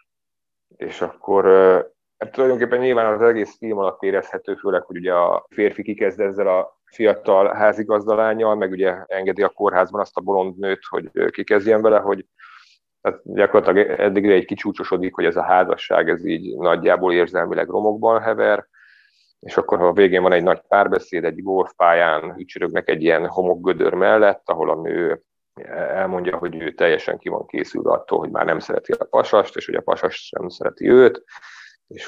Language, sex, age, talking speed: Hungarian, male, 30-49, 155 wpm